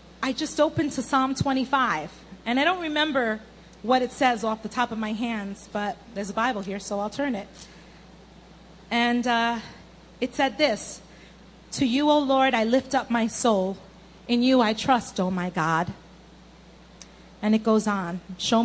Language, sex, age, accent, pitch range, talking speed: English, female, 30-49, American, 195-255 Hz, 175 wpm